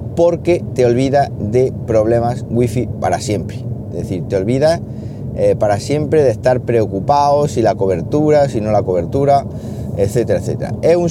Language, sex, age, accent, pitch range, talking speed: Spanish, male, 30-49, Spanish, 105-125 Hz, 155 wpm